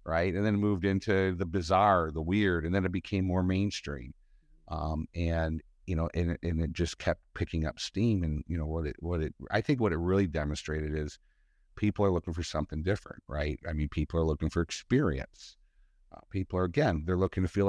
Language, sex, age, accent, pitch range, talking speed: English, male, 50-69, American, 80-95 Hz, 215 wpm